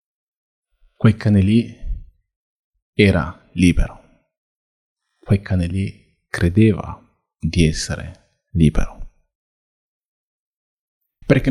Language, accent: Italian, native